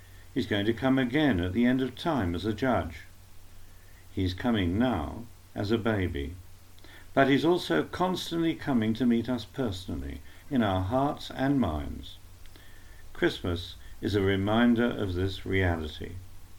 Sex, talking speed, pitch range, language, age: male, 145 wpm, 90-125 Hz, English, 60-79